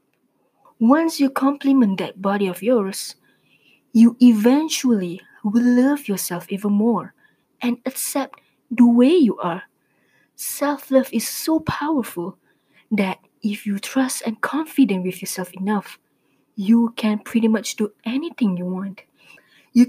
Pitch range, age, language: 205-275 Hz, 20-39, English